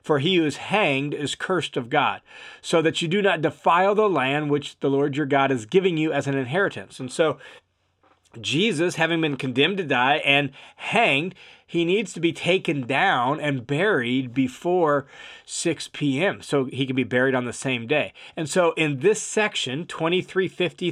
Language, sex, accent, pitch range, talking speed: English, male, American, 140-175 Hz, 185 wpm